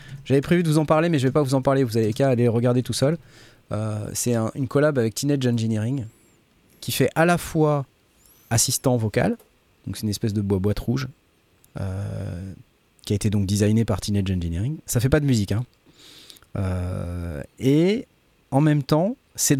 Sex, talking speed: male, 200 wpm